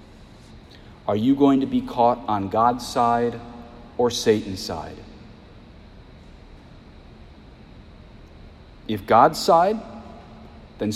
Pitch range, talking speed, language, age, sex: 110-135 Hz, 90 wpm, English, 40-59, male